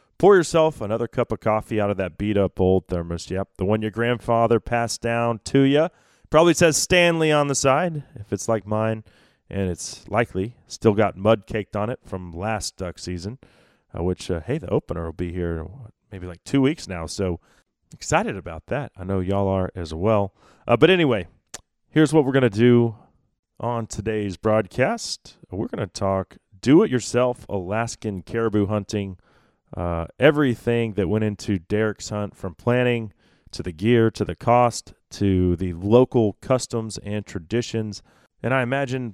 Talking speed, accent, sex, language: 170 wpm, American, male, English